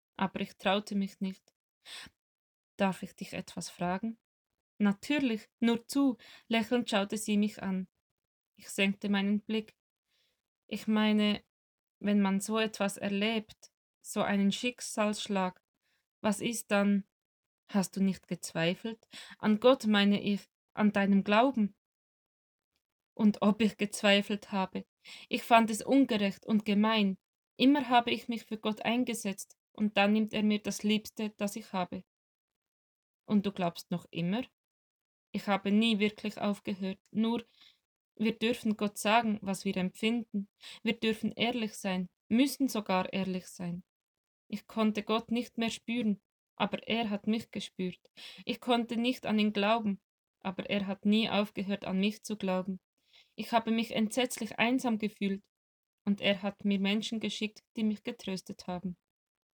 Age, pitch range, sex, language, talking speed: 20-39, 195-225 Hz, female, German, 145 wpm